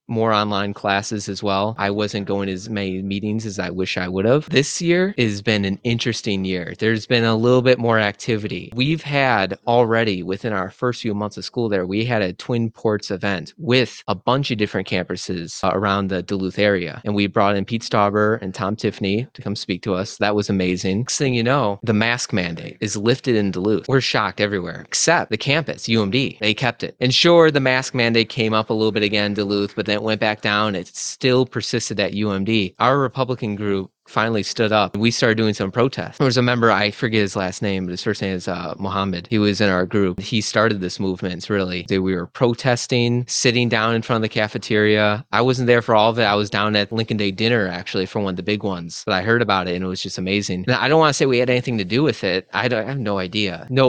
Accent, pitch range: American, 100-120 Hz